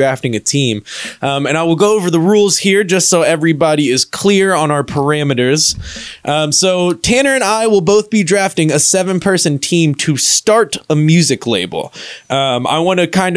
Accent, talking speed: American, 195 wpm